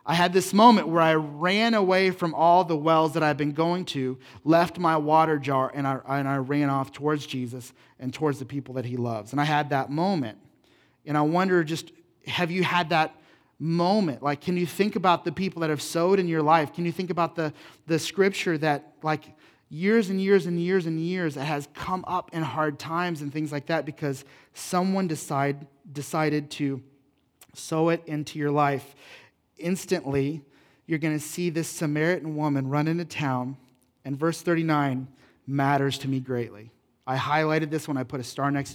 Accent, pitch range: American, 140-170 Hz